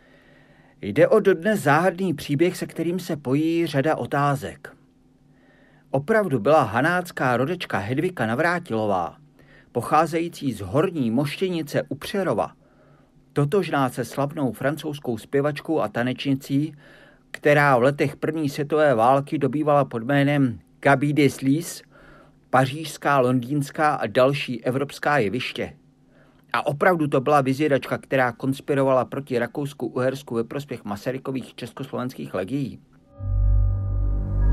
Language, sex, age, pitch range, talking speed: Czech, male, 50-69, 130-155 Hz, 110 wpm